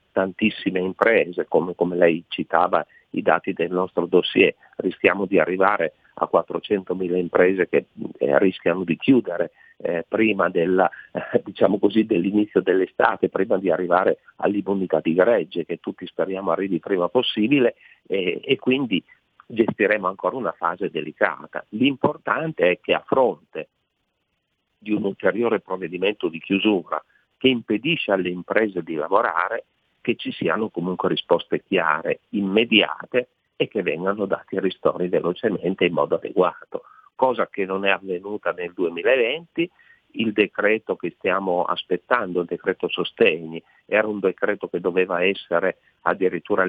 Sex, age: male, 40-59